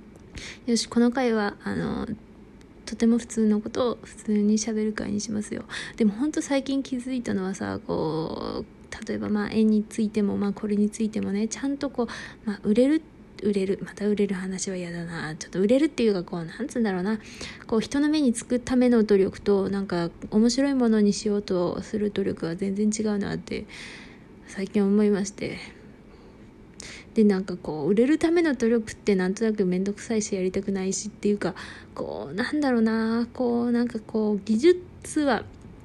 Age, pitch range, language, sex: 20-39, 205-240 Hz, Japanese, female